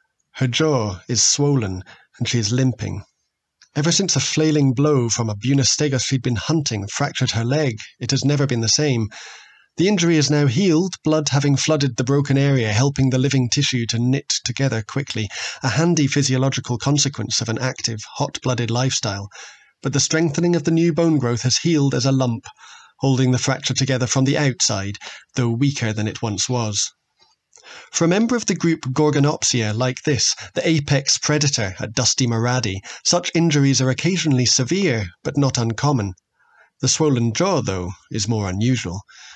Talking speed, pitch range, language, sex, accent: 170 wpm, 115-145 Hz, English, male, British